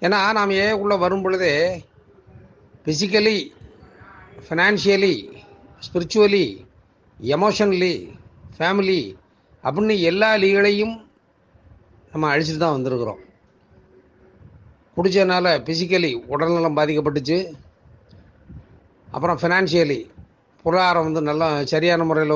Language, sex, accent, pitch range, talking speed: Tamil, male, native, 145-195 Hz, 75 wpm